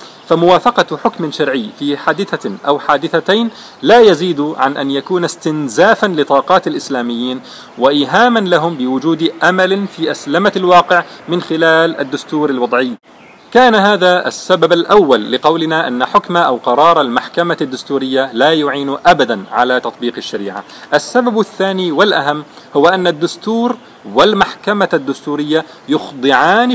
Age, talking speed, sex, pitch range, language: 40-59, 115 wpm, male, 140-185 Hz, Arabic